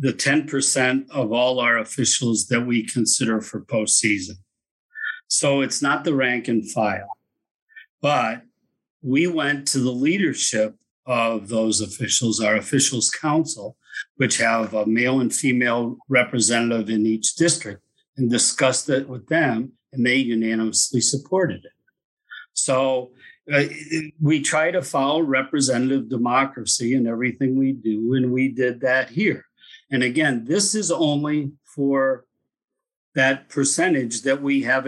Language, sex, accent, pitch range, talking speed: English, male, American, 120-150 Hz, 135 wpm